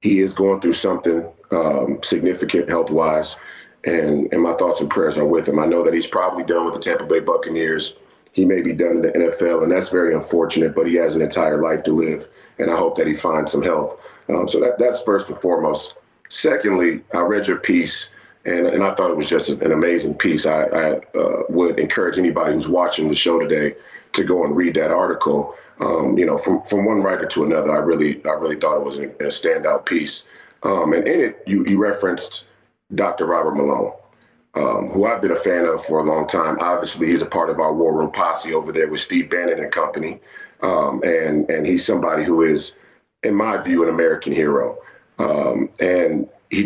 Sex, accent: male, American